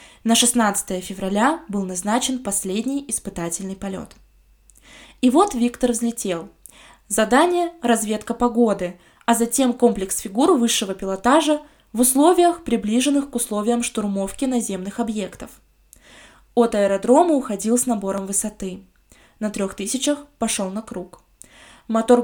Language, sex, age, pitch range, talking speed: Russian, female, 20-39, 195-250 Hz, 115 wpm